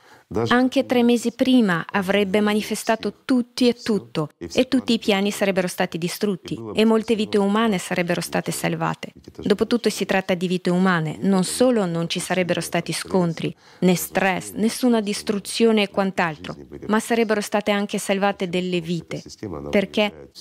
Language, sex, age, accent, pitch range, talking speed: Italian, female, 20-39, native, 185-225 Hz, 145 wpm